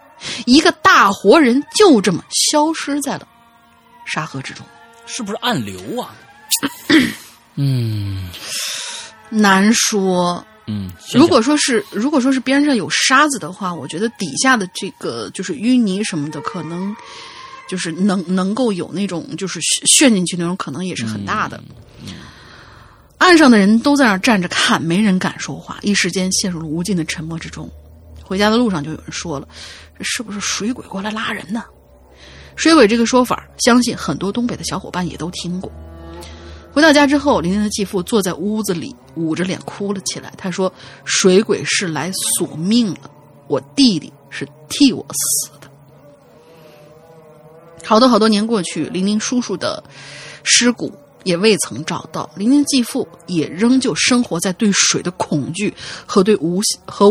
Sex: female